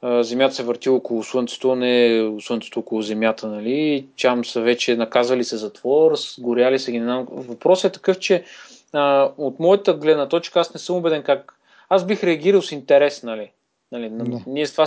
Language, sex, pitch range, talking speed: Bulgarian, male, 125-150 Hz, 180 wpm